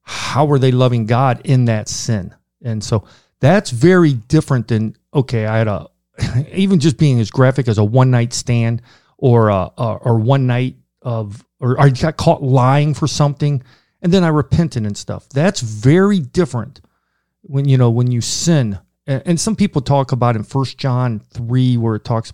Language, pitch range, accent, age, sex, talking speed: English, 115-140 Hz, American, 40-59, male, 185 wpm